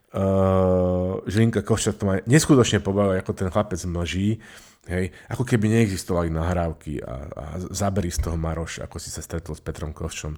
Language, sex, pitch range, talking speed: Slovak, male, 90-115 Hz, 170 wpm